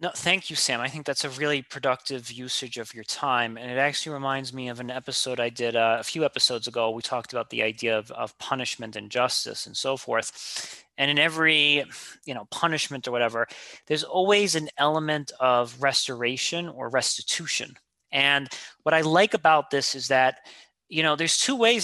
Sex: male